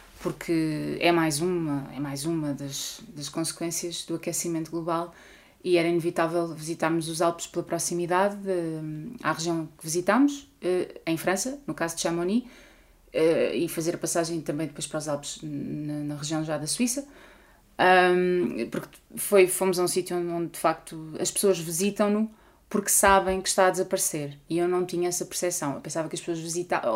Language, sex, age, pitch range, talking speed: Portuguese, female, 20-39, 160-195 Hz, 165 wpm